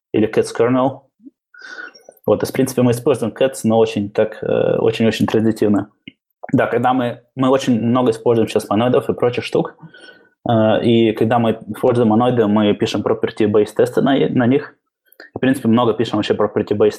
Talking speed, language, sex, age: 165 wpm, Russian, male, 20-39